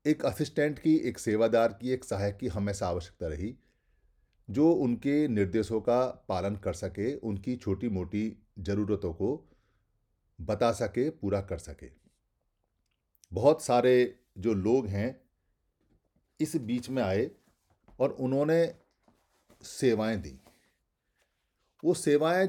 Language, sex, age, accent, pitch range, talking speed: Hindi, male, 40-59, native, 105-145 Hz, 115 wpm